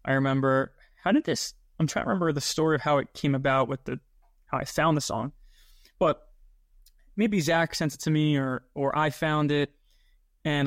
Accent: American